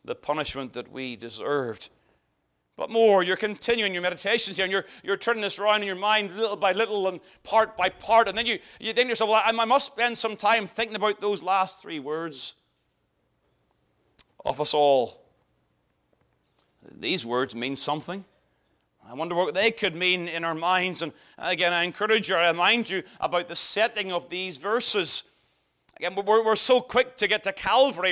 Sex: male